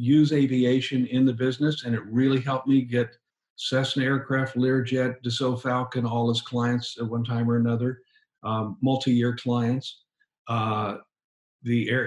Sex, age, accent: male, 50-69, American